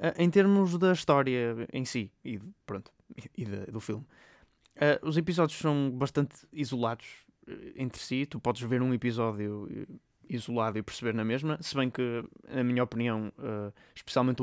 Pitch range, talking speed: 115-145 Hz, 145 wpm